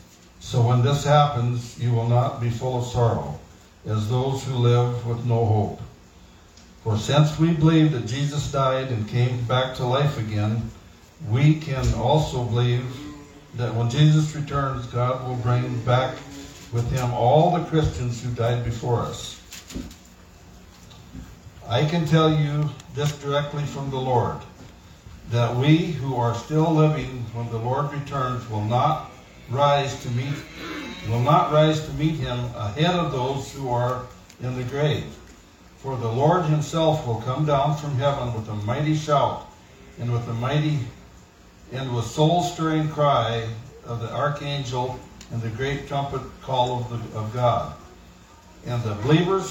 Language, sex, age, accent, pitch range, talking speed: English, male, 60-79, American, 120-145 Hz, 155 wpm